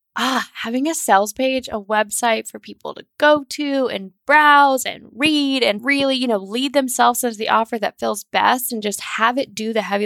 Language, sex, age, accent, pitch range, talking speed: English, female, 20-39, American, 200-260 Hz, 210 wpm